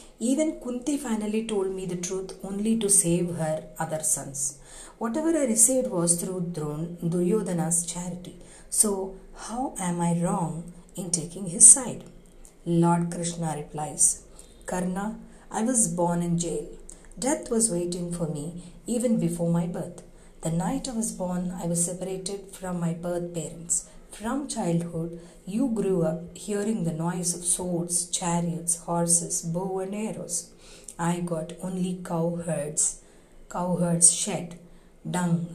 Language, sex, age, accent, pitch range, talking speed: Telugu, female, 50-69, native, 170-205 Hz, 135 wpm